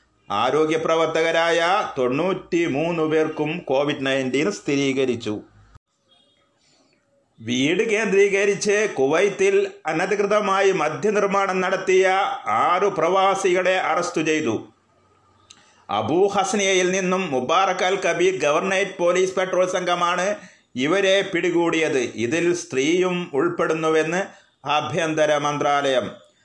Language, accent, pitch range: Malayalam, native, 155-190 Hz